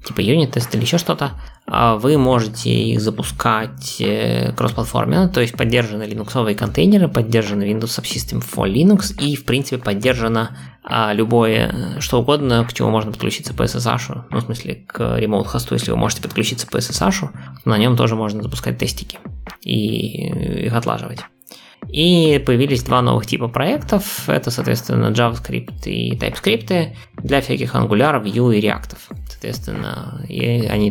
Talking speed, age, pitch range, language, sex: 145 wpm, 20-39, 105-130 Hz, Russian, male